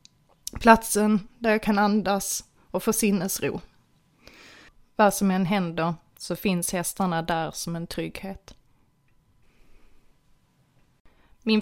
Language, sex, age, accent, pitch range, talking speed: Swedish, female, 20-39, native, 160-190 Hz, 100 wpm